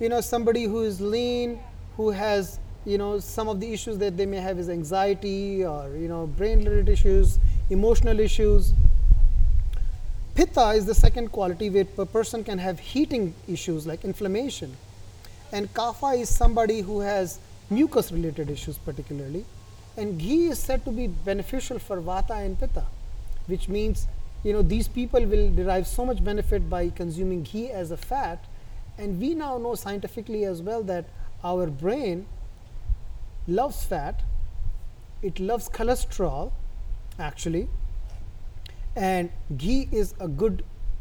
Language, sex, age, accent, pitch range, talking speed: English, male, 30-49, Indian, 155-220 Hz, 145 wpm